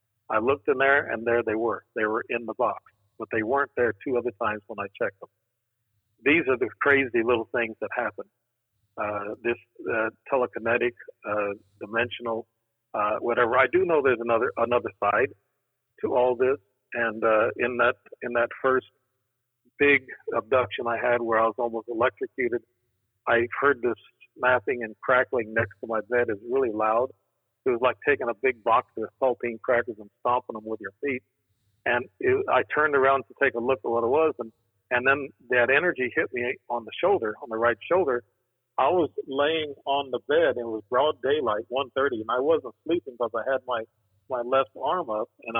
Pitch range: 115-140 Hz